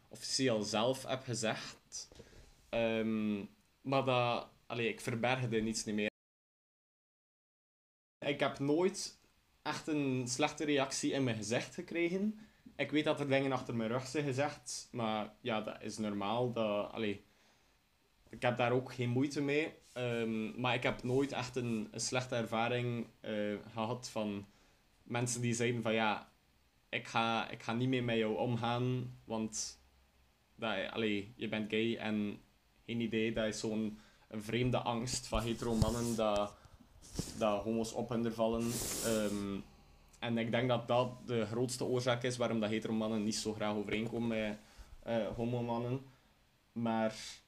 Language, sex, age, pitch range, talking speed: Dutch, male, 20-39, 110-125 Hz, 155 wpm